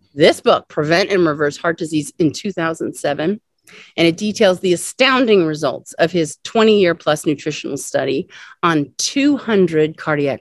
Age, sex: 40-59, female